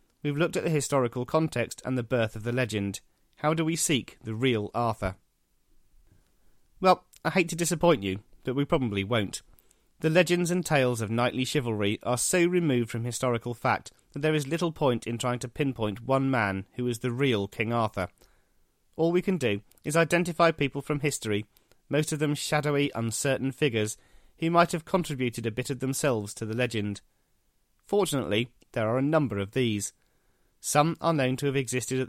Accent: British